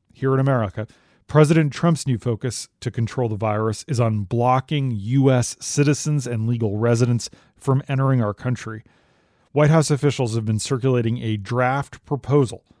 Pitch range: 115-135 Hz